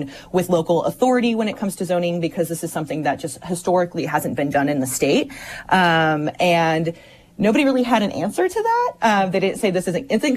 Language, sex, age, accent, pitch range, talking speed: English, female, 30-49, American, 155-195 Hz, 215 wpm